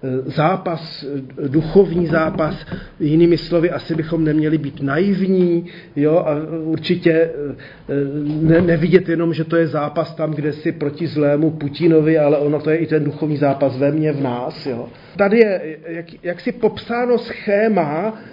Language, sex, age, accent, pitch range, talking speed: Czech, male, 40-59, native, 155-185 Hz, 145 wpm